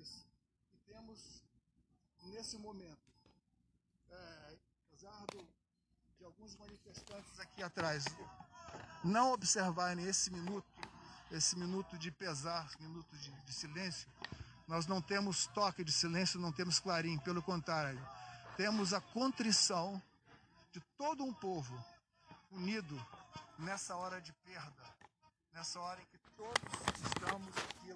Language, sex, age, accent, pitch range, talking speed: Portuguese, male, 50-69, Brazilian, 165-200 Hz, 115 wpm